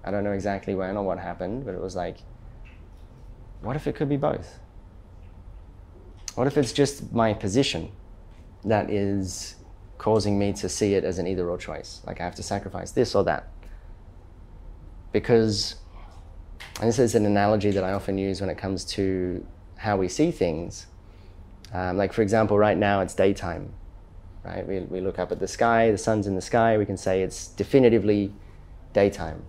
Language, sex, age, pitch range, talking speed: English, male, 20-39, 90-105 Hz, 180 wpm